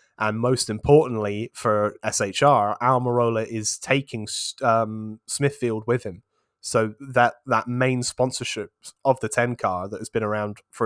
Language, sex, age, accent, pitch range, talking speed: English, male, 20-39, British, 105-130 Hz, 150 wpm